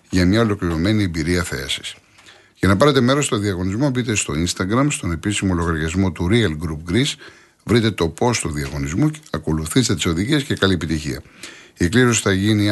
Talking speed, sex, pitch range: 170 wpm, male, 80-110 Hz